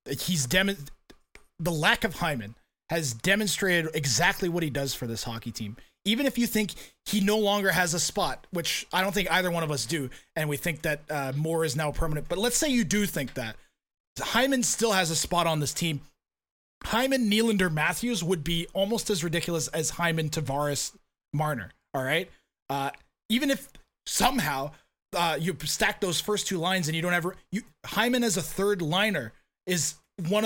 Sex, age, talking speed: male, 30-49, 190 wpm